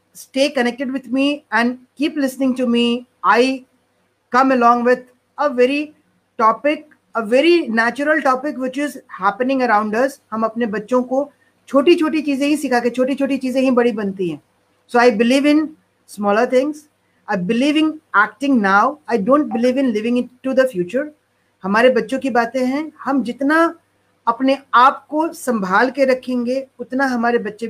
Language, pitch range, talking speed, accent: Hindi, 215-265 Hz, 160 wpm, native